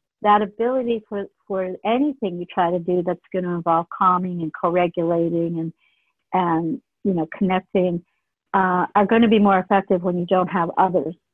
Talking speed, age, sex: 175 wpm, 50-69, female